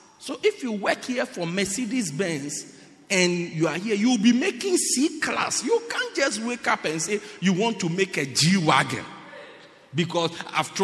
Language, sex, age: English, male, 50-69